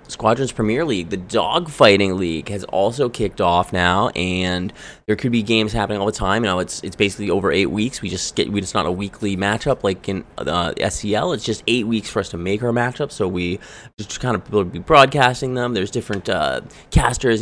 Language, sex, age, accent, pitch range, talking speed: English, male, 20-39, American, 95-125 Hz, 220 wpm